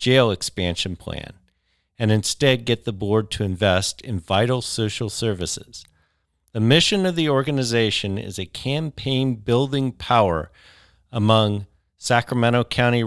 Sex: male